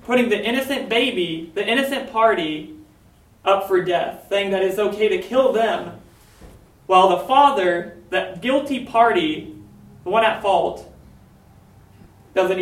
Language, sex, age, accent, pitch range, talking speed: English, male, 30-49, American, 175-225 Hz, 135 wpm